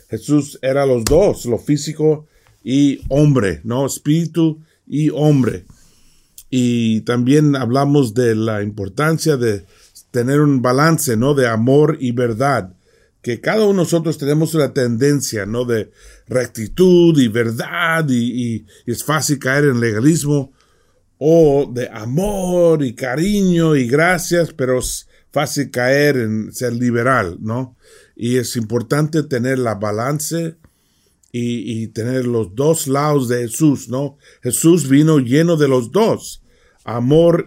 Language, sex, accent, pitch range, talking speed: English, male, Mexican, 120-155 Hz, 135 wpm